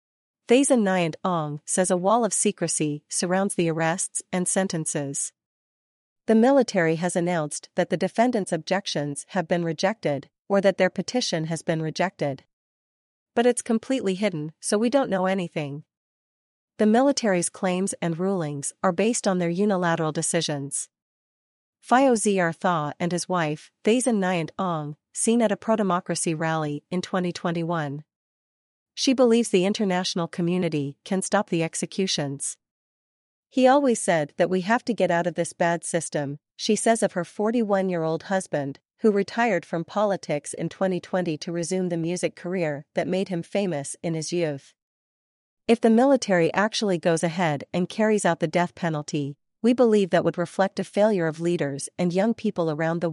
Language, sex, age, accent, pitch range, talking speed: English, female, 40-59, American, 160-200 Hz, 155 wpm